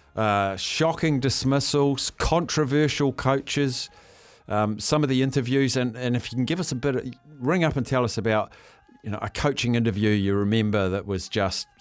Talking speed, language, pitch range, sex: 185 wpm, English, 100-125 Hz, male